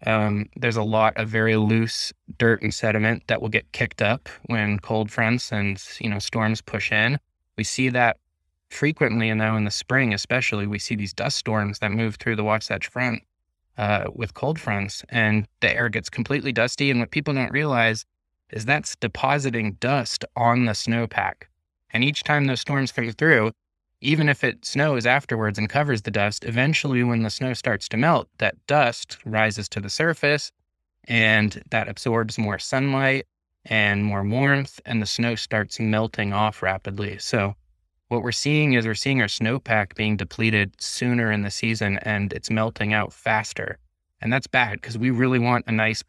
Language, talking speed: English, 180 wpm